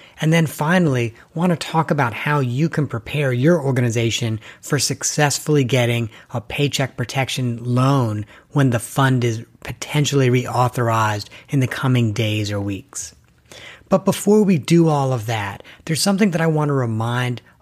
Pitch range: 120-150 Hz